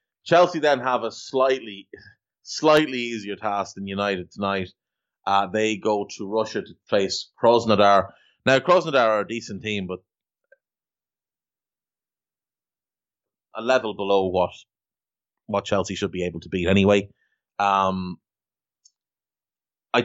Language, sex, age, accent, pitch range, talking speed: English, male, 30-49, Irish, 100-130 Hz, 120 wpm